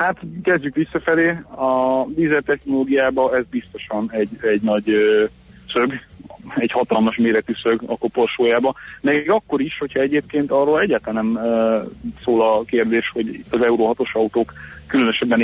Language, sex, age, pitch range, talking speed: Hungarian, male, 30-49, 110-130 Hz, 130 wpm